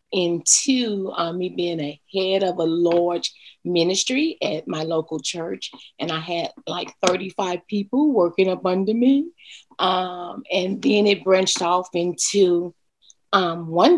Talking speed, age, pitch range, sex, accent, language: 140 wpm, 30-49, 185-260 Hz, female, American, English